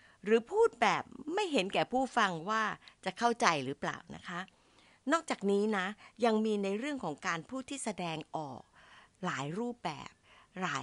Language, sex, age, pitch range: Thai, female, 60-79, 165-240 Hz